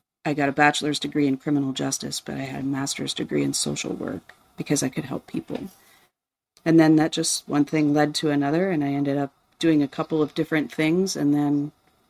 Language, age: English, 40-59